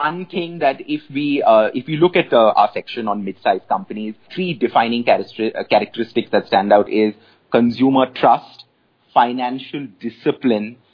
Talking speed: 150 wpm